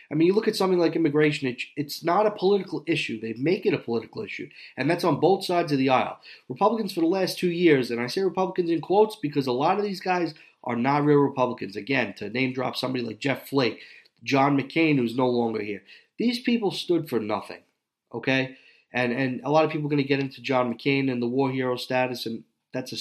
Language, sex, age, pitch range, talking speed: English, male, 30-49, 115-160 Hz, 235 wpm